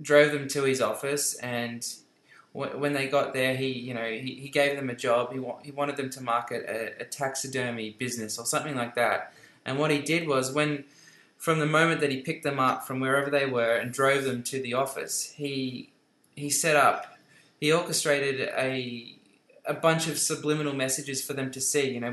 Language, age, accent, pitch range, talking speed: English, 20-39, Australian, 130-155 Hz, 210 wpm